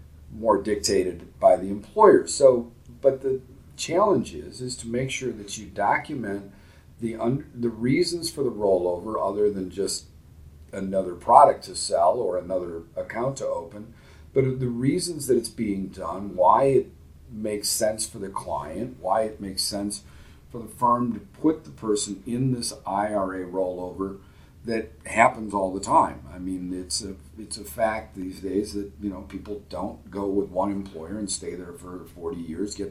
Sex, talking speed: male, 170 wpm